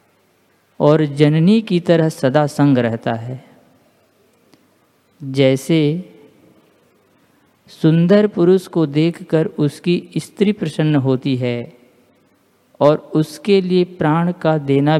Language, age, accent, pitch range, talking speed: Hindi, 50-69, native, 135-170 Hz, 95 wpm